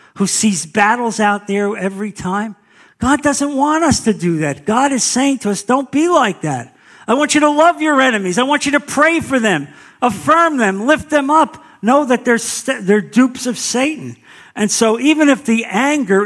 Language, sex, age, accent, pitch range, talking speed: English, male, 50-69, American, 135-225 Hz, 205 wpm